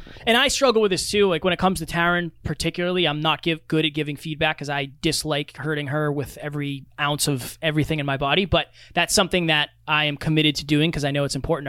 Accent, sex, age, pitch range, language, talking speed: American, male, 20-39, 150-185 Hz, English, 235 wpm